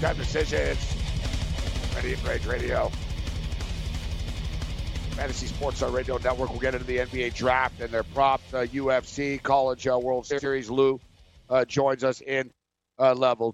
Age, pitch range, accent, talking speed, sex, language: 50-69, 95-150 Hz, American, 140 wpm, male, English